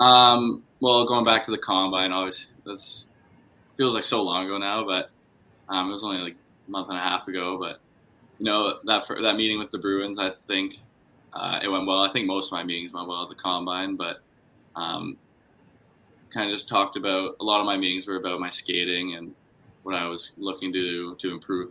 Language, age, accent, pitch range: English, 20-39, American, 90-100 Hz